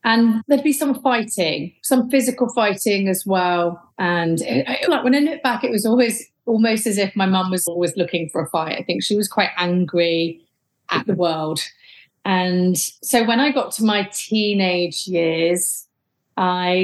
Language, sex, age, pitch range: English, female, 30-49, 175-220 Hz